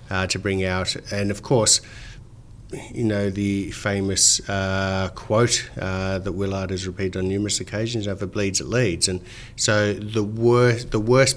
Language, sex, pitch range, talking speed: English, male, 95-120 Hz, 180 wpm